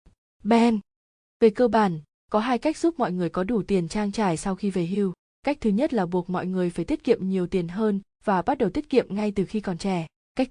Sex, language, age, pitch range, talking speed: female, English, 20-39, 185-230 Hz, 245 wpm